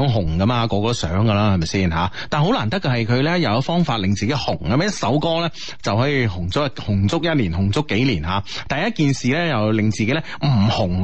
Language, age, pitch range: Chinese, 30-49, 115-185 Hz